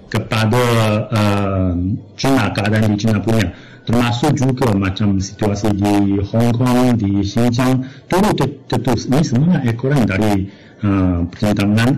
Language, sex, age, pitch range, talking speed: Malay, male, 30-49, 105-135 Hz, 115 wpm